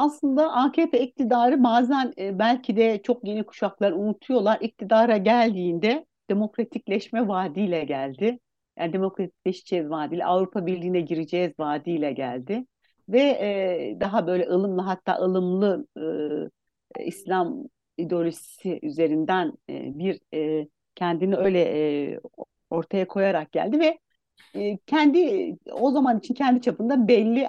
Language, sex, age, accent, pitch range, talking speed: Turkish, female, 60-79, native, 180-250 Hz, 115 wpm